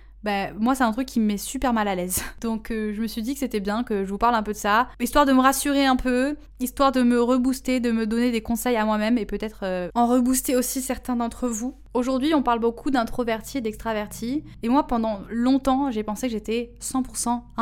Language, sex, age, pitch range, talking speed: French, female, 20-39, 215-255 Hz, 240 wpm